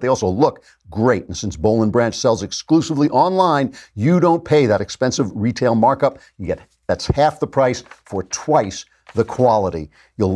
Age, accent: 50-69, American